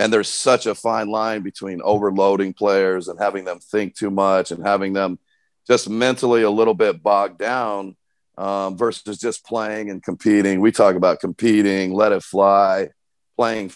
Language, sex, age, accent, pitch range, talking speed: English, male, 40-59, American, 95-115 Hz, 170 wpm